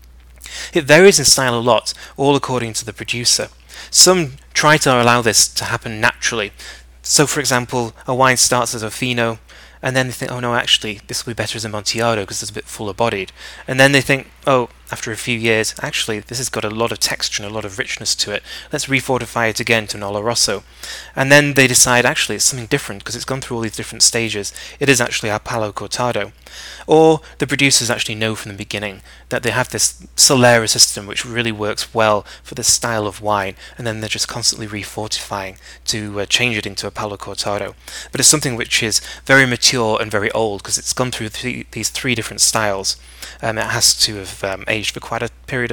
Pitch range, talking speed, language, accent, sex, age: 105-130 Hz, 220 wpm, English, British, male, 20-39